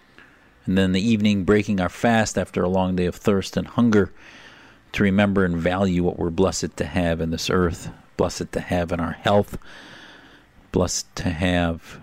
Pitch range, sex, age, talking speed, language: 90-115 Hz, male, 50-69, 180 wpm, English